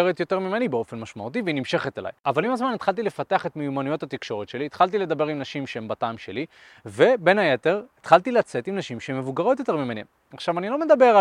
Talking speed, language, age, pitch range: 200 wpm, Hebrew, 20-39, 135-195 Hz